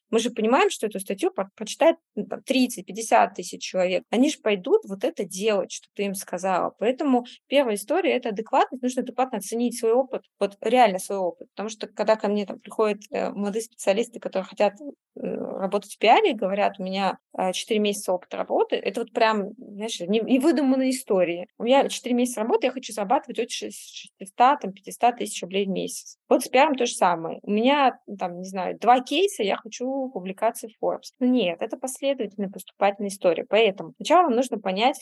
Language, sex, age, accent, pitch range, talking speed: Russian, female, 20-39, native, 195-250 Hz, 180 wpm